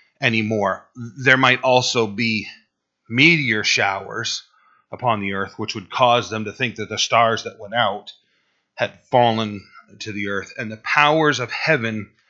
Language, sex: English, male